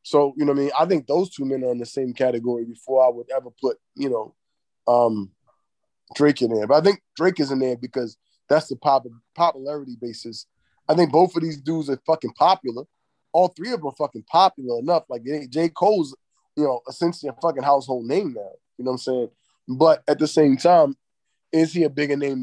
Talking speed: 220 wpm